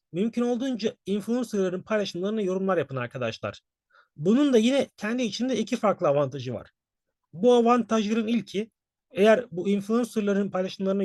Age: 40-59